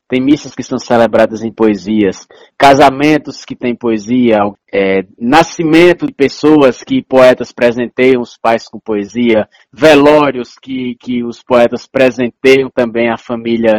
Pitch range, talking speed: 120-150 Hz, 130 wpm